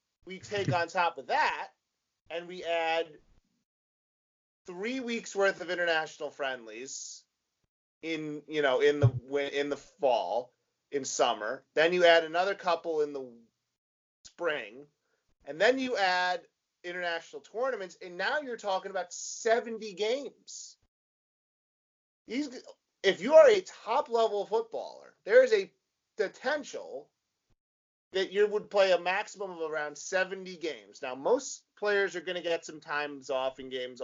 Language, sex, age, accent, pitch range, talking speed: English, male, 30-49, American, 160-225 Hz, 140 wpm